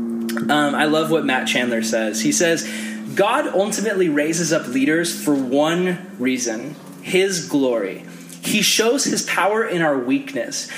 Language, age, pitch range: English, 20-39, 150-205 Hz